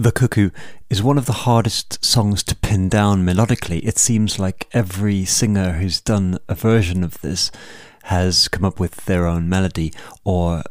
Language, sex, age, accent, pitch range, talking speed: English, male, 40-59, British, 95-115 Hz, 175 wpm